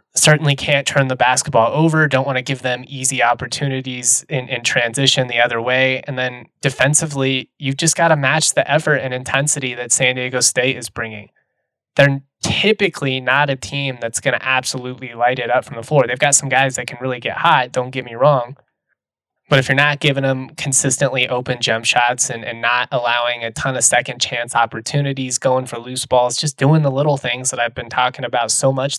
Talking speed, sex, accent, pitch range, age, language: 210 wpm, male, American, 120-140 Hz, 20-39, English